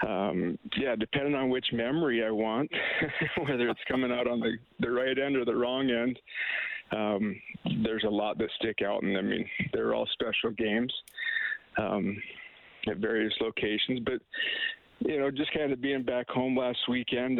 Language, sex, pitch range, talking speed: English, male, 110-125 Hz, 170 wpm